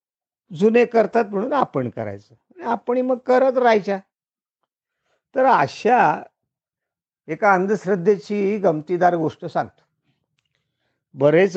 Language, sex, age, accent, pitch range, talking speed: Marathi, male, 50-69, native, 135-205 Hz, 90 wpm